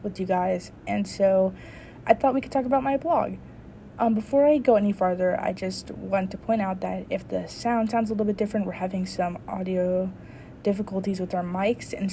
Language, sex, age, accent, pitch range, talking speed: English, female, 20-39, American, 180-210 Hz, 215 wpm